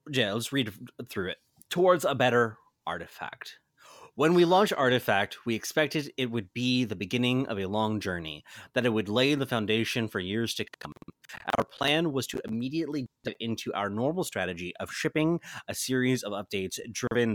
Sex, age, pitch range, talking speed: male, 30-49, 105-135 Hz, 175 wpm